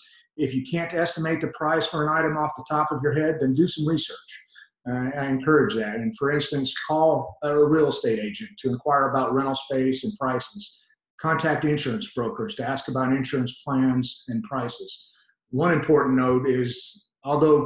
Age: 50-69